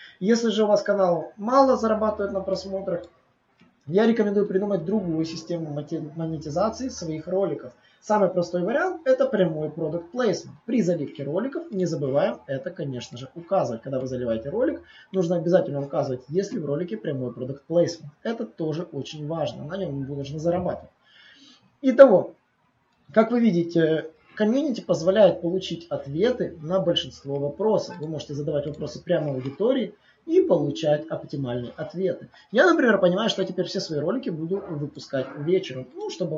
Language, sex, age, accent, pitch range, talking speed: Russian, male, 20-39, native, 150-205 Hz, 150 wpm